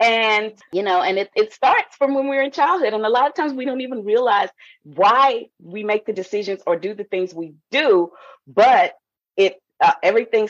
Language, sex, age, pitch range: English, female, 30-49, 185-270 Hz